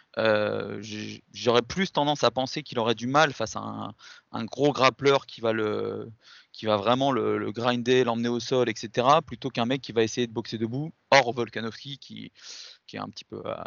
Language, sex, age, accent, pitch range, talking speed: French, male, 20-39, French, 110-130 Hz, 205 wpm